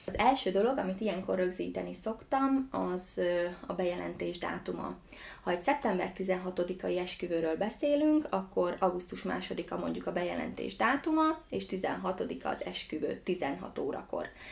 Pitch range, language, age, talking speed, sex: 170-200 Hz, Hungarian, 20-39, 125 wpm, female